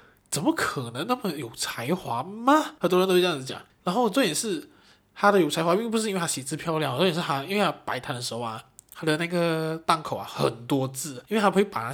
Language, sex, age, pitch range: Chinese, male, 20-39, 135-180 Hz